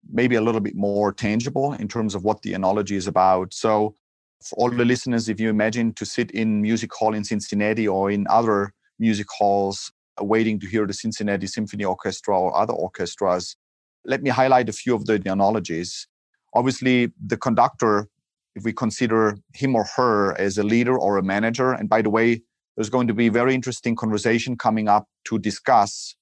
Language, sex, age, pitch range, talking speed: English, male, 30-49, 105-120 Hz, 190 wpm